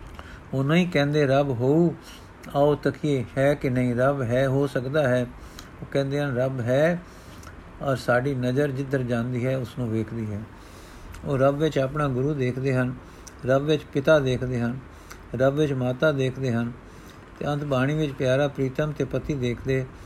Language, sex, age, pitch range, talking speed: Punjabi, male, 50-69, 120-145 Hz, 170 wpm